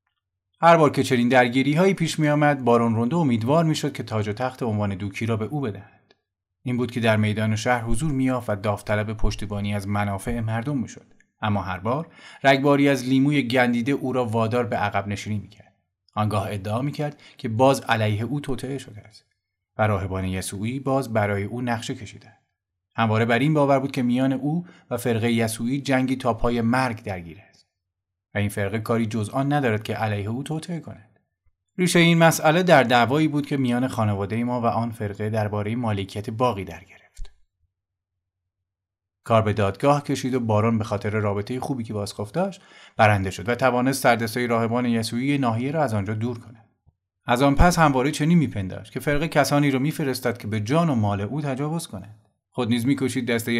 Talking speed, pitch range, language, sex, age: 185 wpm, 105-135 Hz, Persian, male, 30-49